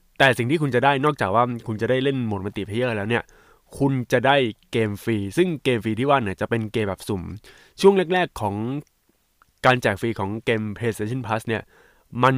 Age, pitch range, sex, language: 20-39, 110-140 Hz, male, Thai